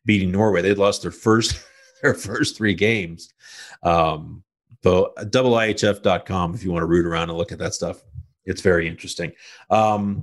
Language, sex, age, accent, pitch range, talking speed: English, male, 50-69, American, 95-115 Hz, 170 wpm